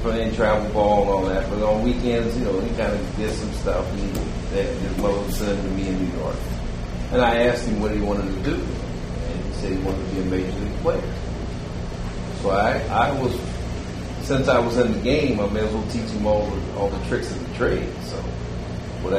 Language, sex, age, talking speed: English, male, 40-59, 230 wpm